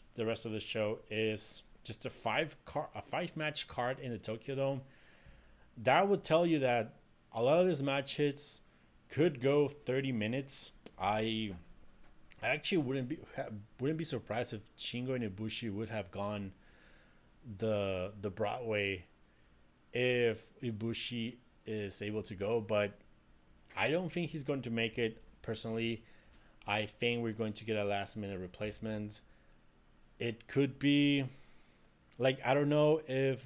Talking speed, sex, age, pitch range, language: 150 wpm, male, 30-49, 100-125 Hz, English